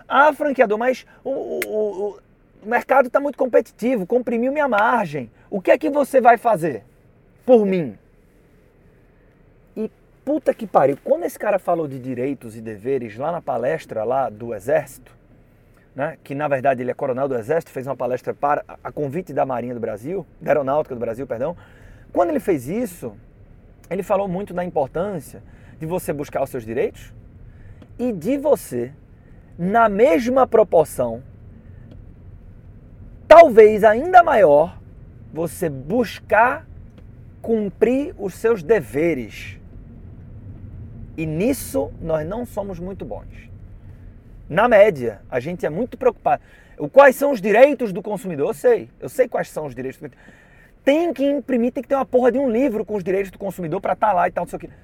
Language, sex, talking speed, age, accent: Portuguese, male, 160 wpm, 30-49, Brazilian